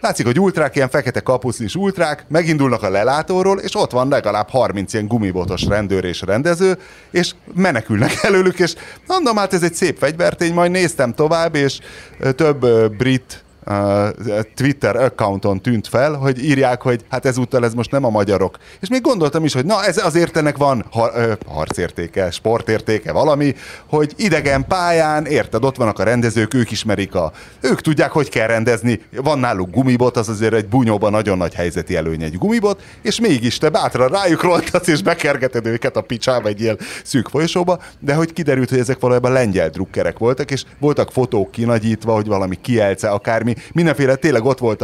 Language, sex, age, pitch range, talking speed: Hungarian, male, 30-49, 110-155 Hz, 175 wpm